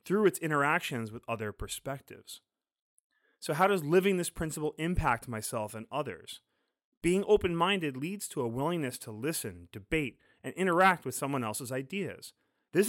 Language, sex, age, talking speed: English, male, 30-49, 150 wpm